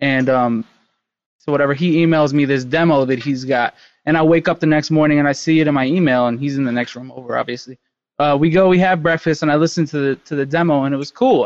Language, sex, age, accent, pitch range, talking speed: English, male, 20-39, American, 140-165 Hz, 270 wpm